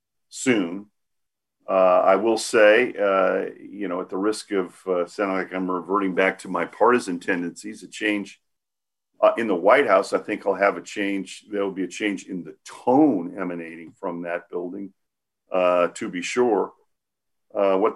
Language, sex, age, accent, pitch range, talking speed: English, male, 50-69, American, 90-110 Hz, 175 wpm